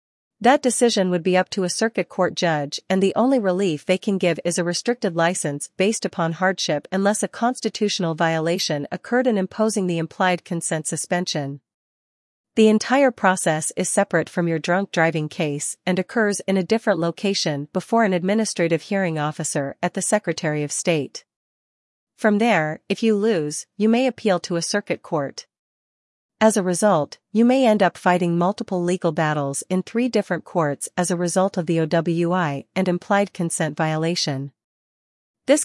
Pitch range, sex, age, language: 165-210 Hz, female, 40-59, English